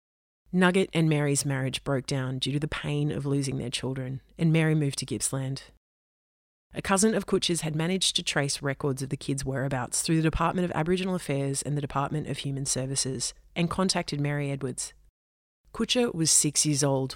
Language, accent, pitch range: English, Australian, 130-155 Hz